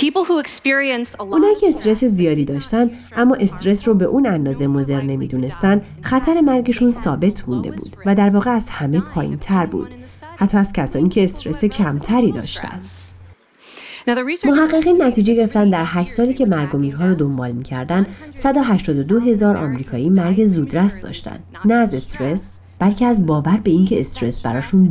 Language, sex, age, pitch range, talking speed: Persian, female, 30-49, 145-240 Hz, 150 wpm